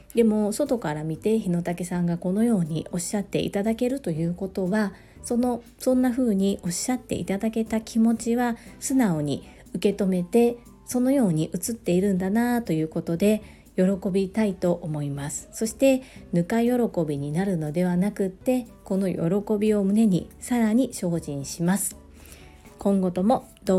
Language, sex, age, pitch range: Japanese, female, 40-59, 175-235 Hz